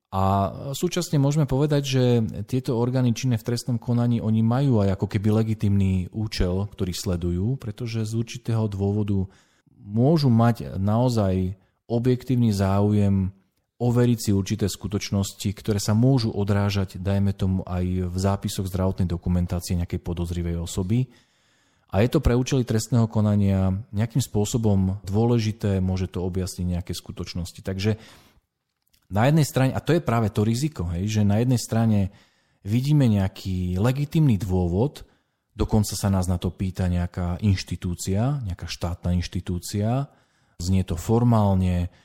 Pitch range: 95-120 Hz